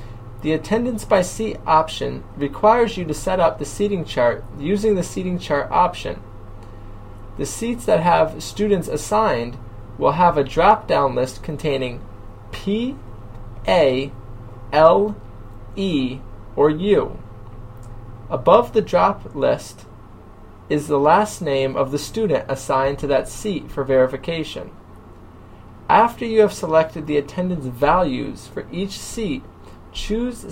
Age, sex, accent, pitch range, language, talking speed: 20-39, male, American, 110-180 Hz, English, 125 wpm